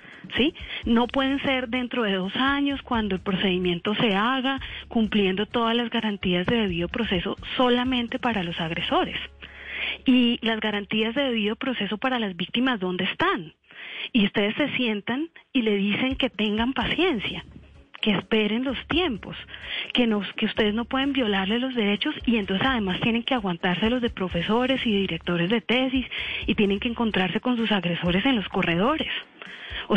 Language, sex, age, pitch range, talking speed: Spanish, female, 30-49, 195-255 Hz, 165 wpm